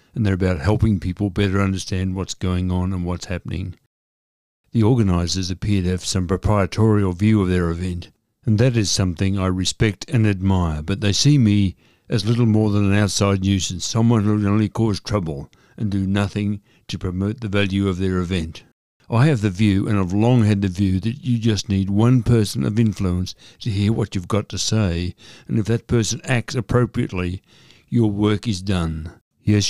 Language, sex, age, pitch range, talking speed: English, male, 60-79, 95-110 Hz, 190 wpm